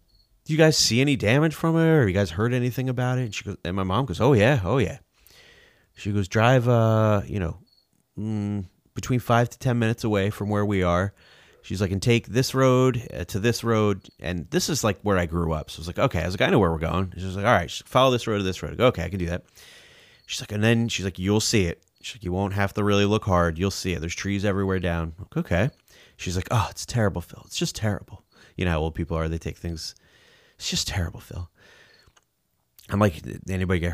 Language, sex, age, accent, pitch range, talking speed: English, male, 30-49, American, 90-120 Hz, 255 wpm